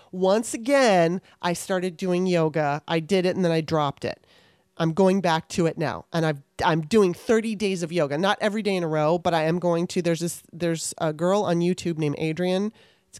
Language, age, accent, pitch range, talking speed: English, 30-49, American, 160-195 Hz, 225 wpm